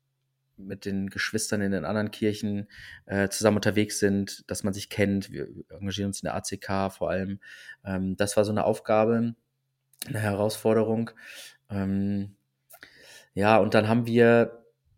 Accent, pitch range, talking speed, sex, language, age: German, 105-120 Hz, 150 wpm, male, German, 20-39